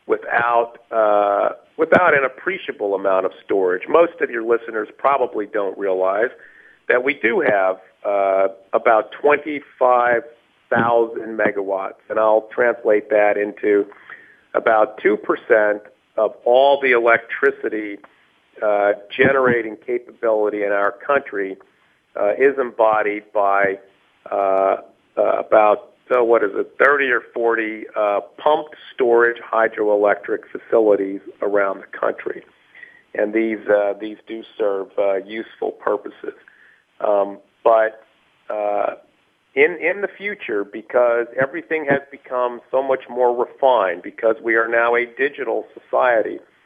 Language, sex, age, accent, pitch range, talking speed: English, male, 50-69, American, 105-125 Hz, 120 wpm